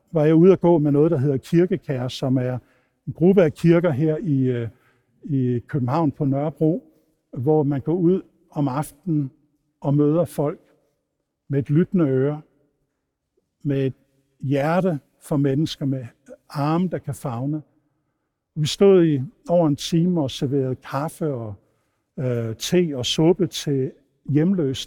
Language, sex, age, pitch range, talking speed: Danish, male, 60-79, 135-165 Hz, 145 wpm